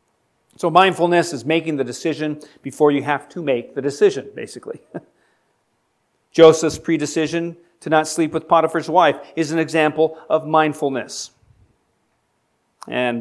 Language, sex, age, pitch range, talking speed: English, male, 40-59, 140-165 Hz, 125 wpm